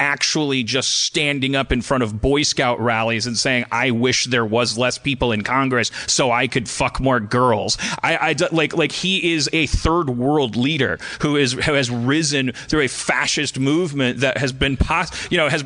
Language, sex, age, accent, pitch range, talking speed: English, male, 30-49, American, 130-170 Hz, 195 wpm